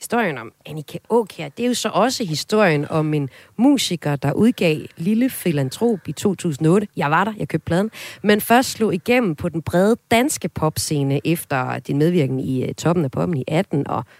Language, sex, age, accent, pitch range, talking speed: Danish, female, 30-49, native, 145-205 Hz, 185 wpm